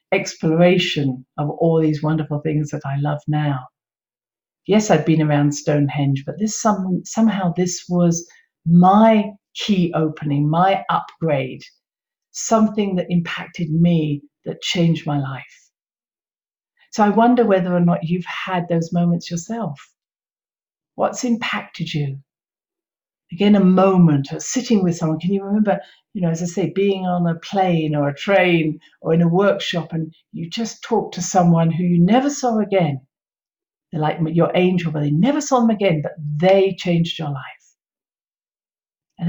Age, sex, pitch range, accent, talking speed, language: 50-69, female, 155-190 Hz, British, 155 wpm, English